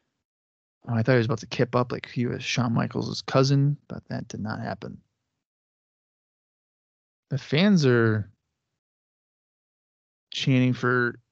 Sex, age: male, 20-39